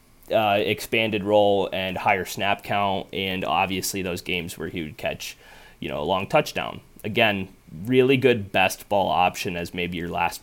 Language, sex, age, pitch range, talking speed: English, male, 30-49, 100-120 Hz, 175 wpm